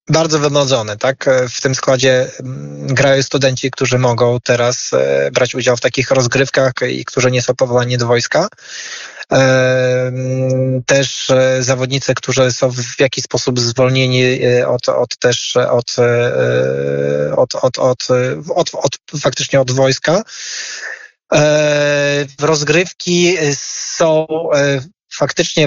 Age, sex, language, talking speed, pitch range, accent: 20-39, male, Polish, 90 wpm, 125-145 Hz, native